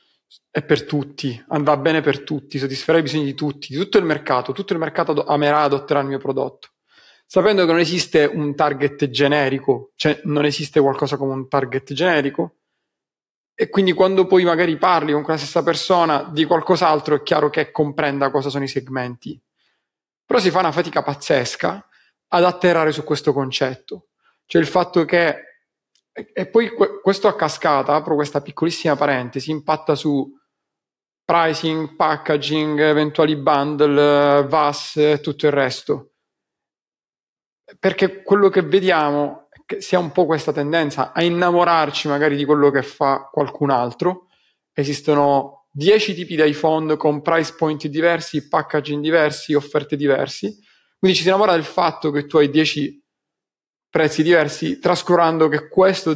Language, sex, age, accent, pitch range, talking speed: Italian, male, 30-49, native, 145-170 Hz, 155 wpm